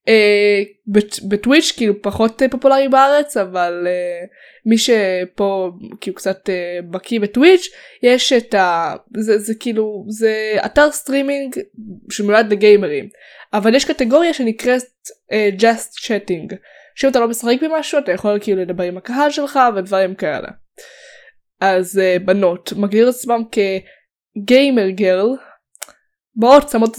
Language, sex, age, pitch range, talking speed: Hebrew, female, 20-39, 200-260 Hz, 125 wpm